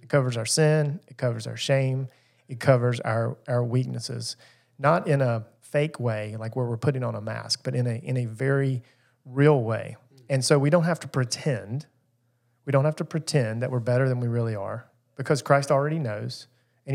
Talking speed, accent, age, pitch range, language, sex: 200 wpm, American, 40-59, 120-140 Hz, English, male